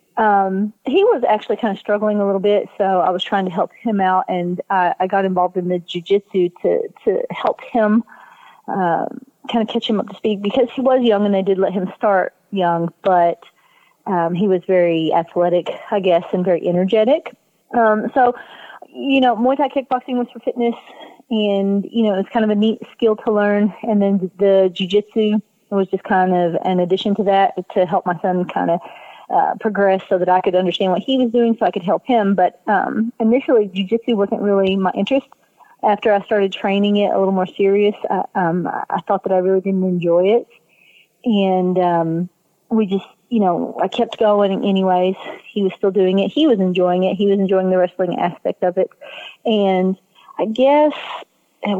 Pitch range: 185-225 Hz